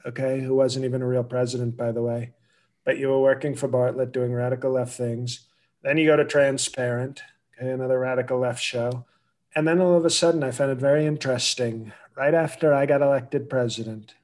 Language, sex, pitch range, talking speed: English, male, 125-145 Hz, 200 wpm